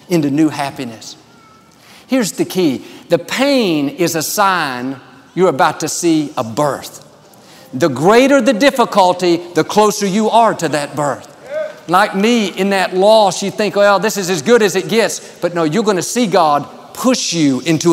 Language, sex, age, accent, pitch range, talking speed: English, male, 50-69, American, 155-200 Hz, 175 wpm